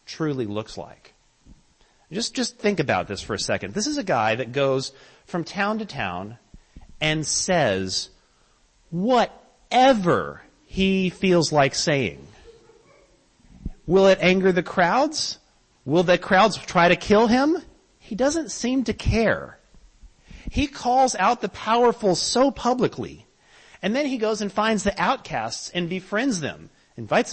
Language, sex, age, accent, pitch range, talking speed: English, male, 40-59, American, 180-245 Hz, 140 wpm